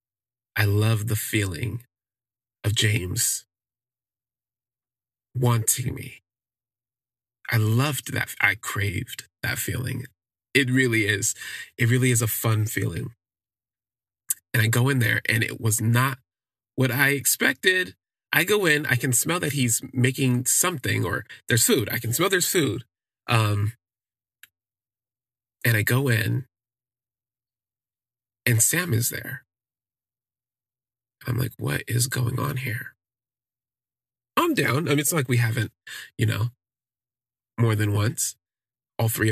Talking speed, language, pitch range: 130 wpm, English, 110-125 Hz